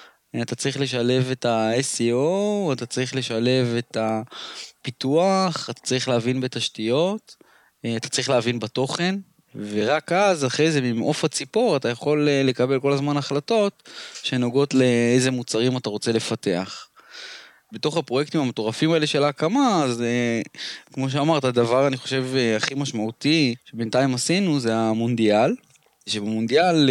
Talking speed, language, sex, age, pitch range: 125 wpm, English, male, 20-39, 120-150 Hz